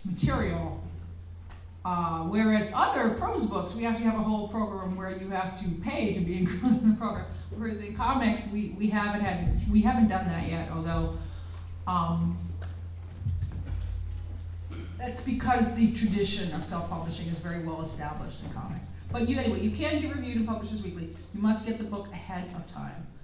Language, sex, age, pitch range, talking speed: English, female, 40-59, 160-215 Hz, 175 wpm